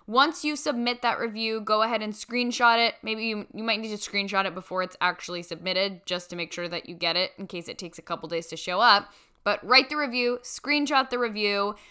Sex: female